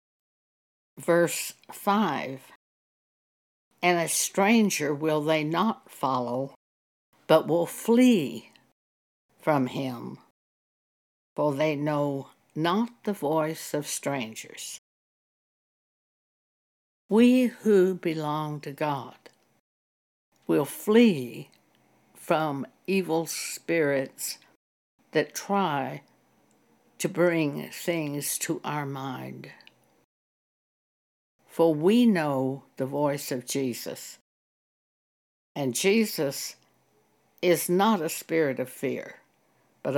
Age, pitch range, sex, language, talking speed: 60-79, 135-180 Hz, female, English, 85 wpm